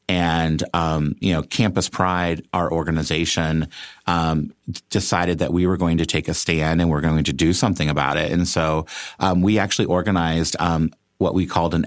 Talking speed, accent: 185 wpm, American